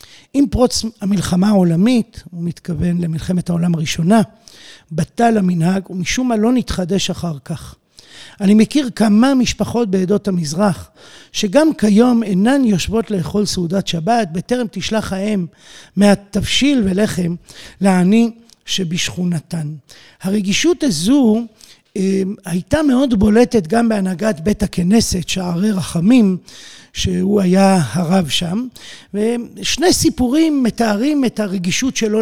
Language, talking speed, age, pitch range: Hebrew, 110 wpm, 50-69, 190-240 Hz